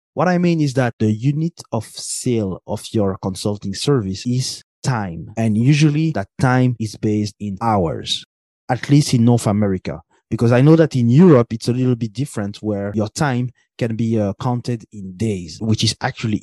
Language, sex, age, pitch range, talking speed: English, male, 20-39, 100-125 Hz, 185 wpm